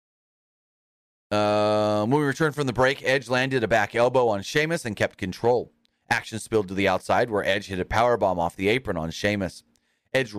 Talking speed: 190 wpm